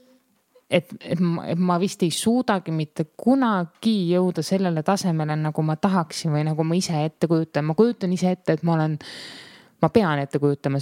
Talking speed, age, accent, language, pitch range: 185 wpm, 20-39, Finnish, English, 160-185 Hz